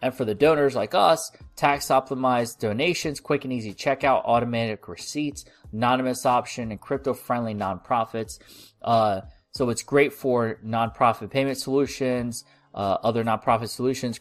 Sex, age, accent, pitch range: male, 20-39, American, 110-135 Hz